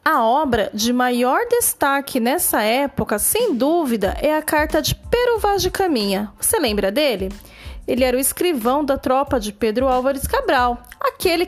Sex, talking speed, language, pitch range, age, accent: female, 160 wpm, Portuguese, 250-340 Hz, 30-49, Brazilian